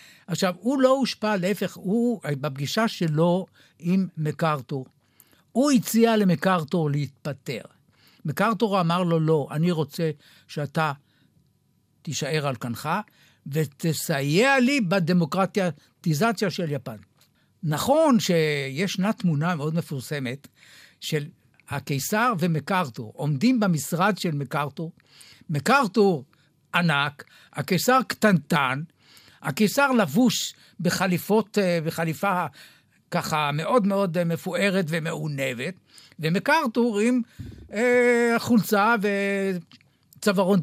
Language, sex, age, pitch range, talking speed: Hebrew, male, 60-79, 145-205 Hz, 85 wpm